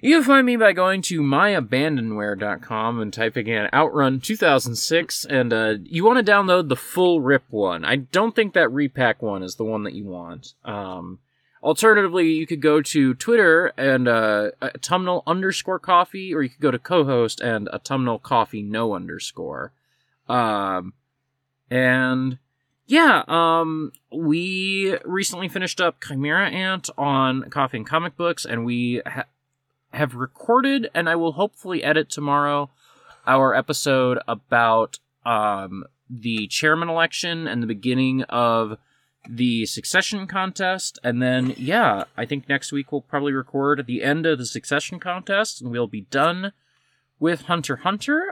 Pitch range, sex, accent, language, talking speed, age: 125-170 Hz, male, American, English, 145 wpm, 20-39